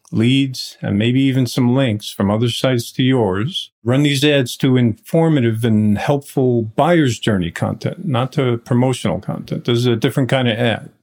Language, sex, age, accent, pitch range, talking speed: English, male, 50-69, American, 115-145 Hz, 175 wpm